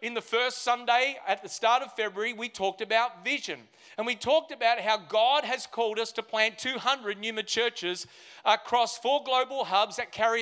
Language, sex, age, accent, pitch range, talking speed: English, male, 40-59, Australian, 190-240 Hz, 190 wpm